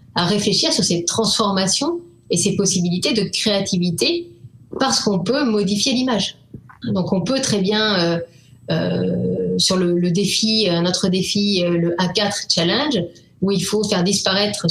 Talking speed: 155 wpm